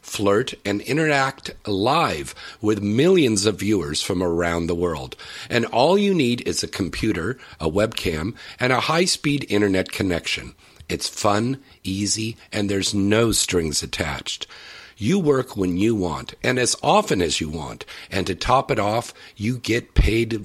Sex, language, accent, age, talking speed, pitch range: male, English, American, 50-69, 155 wpm, 90-115 Hz